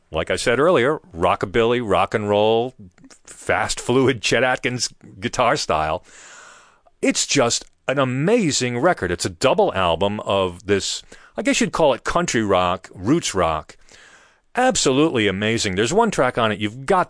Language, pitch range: English, 95-150 Hz